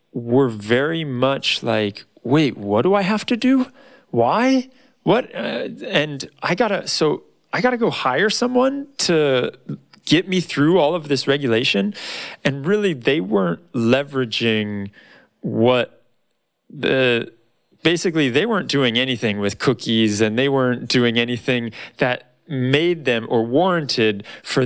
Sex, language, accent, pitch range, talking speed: male, English, American, 110-140 Hz, 135 wpm